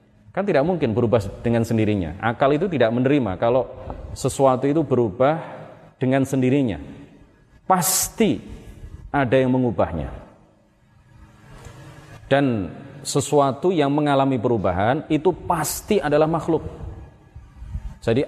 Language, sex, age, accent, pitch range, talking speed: Indonesian, male, 30-49, native, 115-145 Hz, 100 wpm